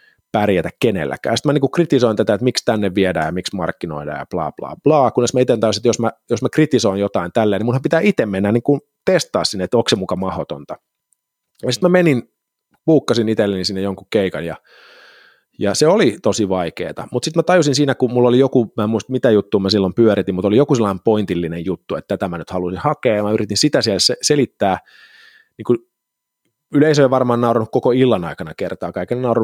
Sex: male